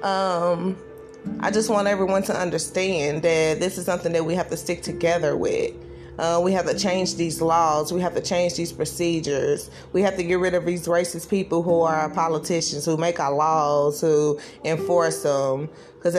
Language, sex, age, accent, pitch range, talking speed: English, female, 20-39, American, 160-195 Hz, 195 wpm